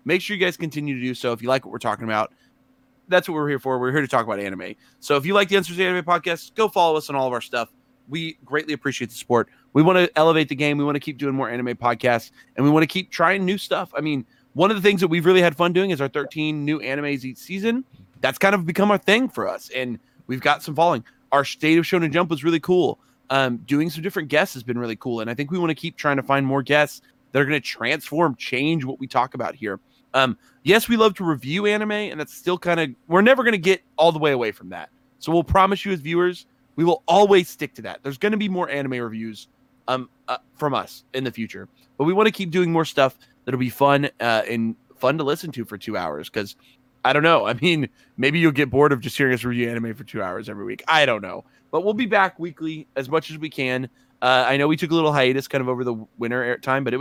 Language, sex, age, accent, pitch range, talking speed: English, male, 30-49, American, 130-175 Hz, 270 wpm